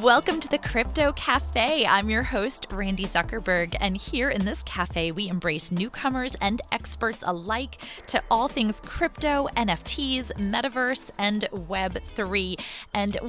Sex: female